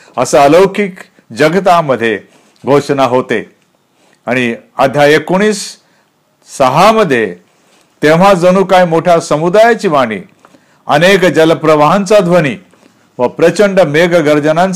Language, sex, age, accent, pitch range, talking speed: Marathi, male, 50-69, native, 130-190 Hz, 85 wpm